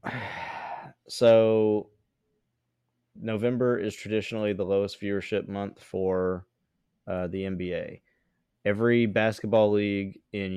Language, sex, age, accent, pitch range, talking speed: English, male, 20-39, American, 95-110 Hz, 90 wpm